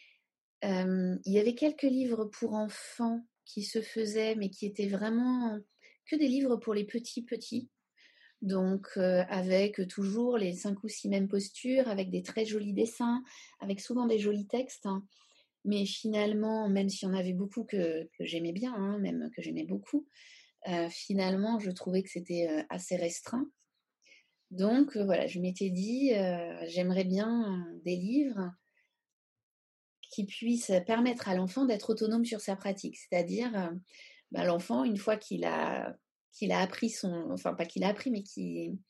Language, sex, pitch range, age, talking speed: French, female, 185-235 Hz, 30-49, 160 wpm